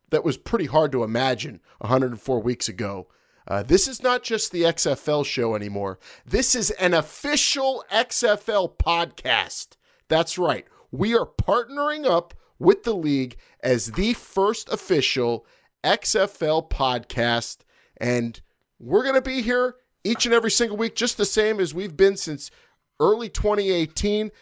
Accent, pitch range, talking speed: American, 130-195 Hz, 145 wpm